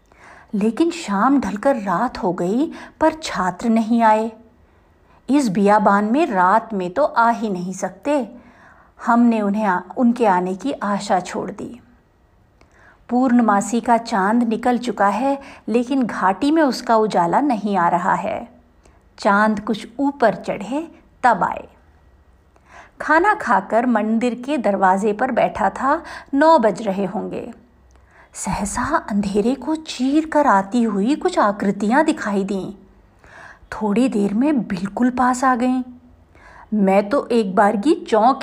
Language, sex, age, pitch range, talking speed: Hindi, female, 50-69, 205-285 Hz, 130 wpm